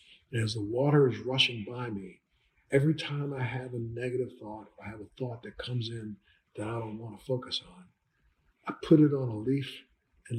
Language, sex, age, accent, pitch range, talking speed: English, male, 50-69, American, 105-135 Hz, 215 wpm